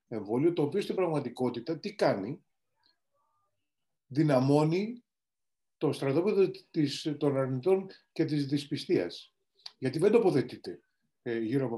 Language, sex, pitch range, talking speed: Greek, male, 125-175 Hz, 105 wpm